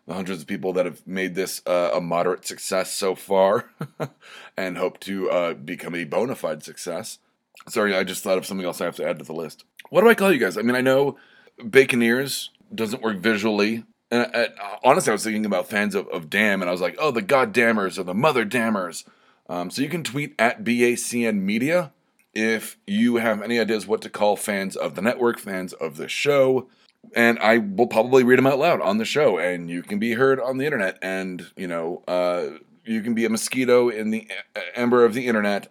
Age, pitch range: 30-49, 90-120 Hz